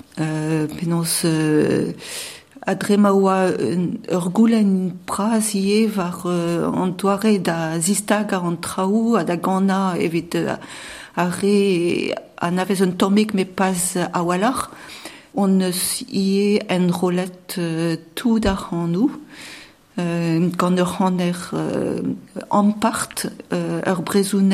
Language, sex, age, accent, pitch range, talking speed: French, female, 50-69, French, 170-200 Hz, 75 wpm